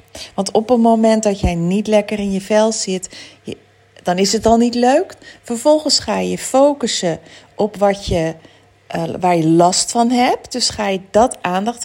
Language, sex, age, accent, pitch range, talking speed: Dutch, female, 40-59, Dutch, 185-240 Hz, 185 wpm